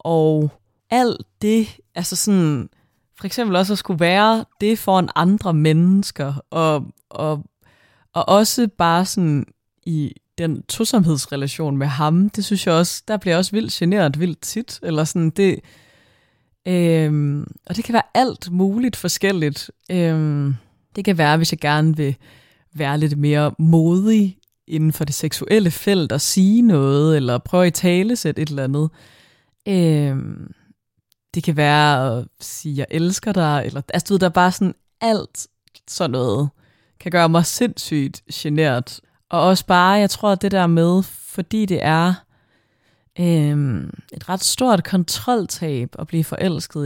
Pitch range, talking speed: 145-190 Hz, 160 wpm